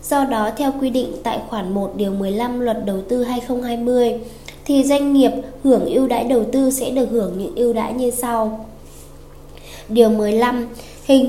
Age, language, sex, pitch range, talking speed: 10-29, Vietnamese, female, 215-265 Hz, 175 wpm